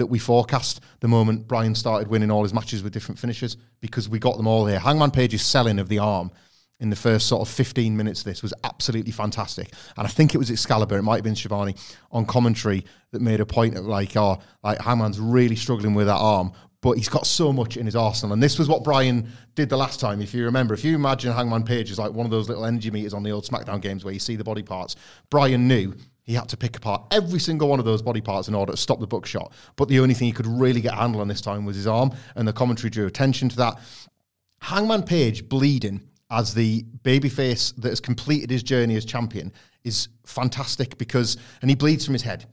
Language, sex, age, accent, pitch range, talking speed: English, male, 30-49, British, 110-125 Hz, 245 wpm